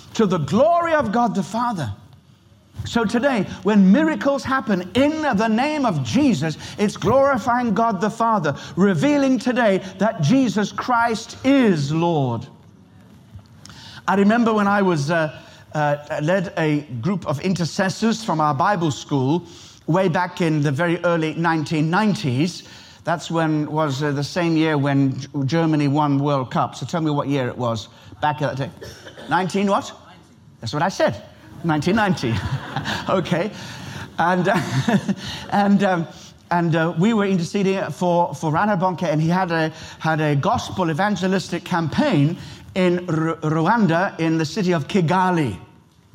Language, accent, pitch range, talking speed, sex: English, British, 150-205 Hz, 145 wpm, male